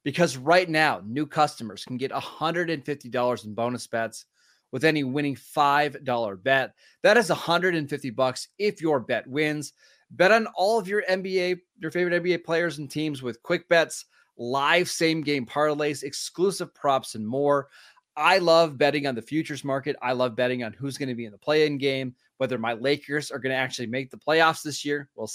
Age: 30-49